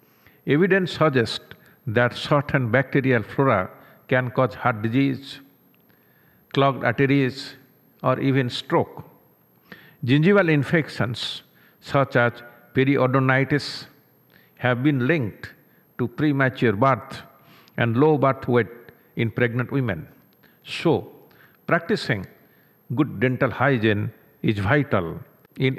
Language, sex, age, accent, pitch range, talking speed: English, male, 50-69, Indian, 120-145 Hz, 95 wpm